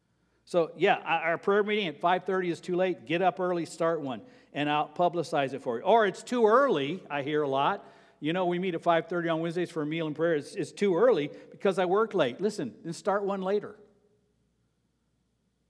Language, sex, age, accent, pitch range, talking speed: English, male, 50-69, American, 150-190 Hz, 210 wpm